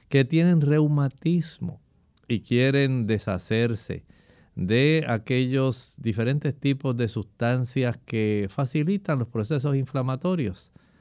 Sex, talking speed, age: male, 95 wpm, 50-69